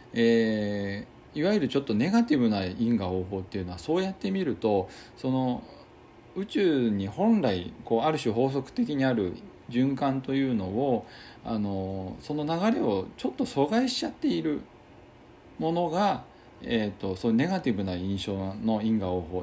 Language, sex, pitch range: Japanese, male, 95-145 Hz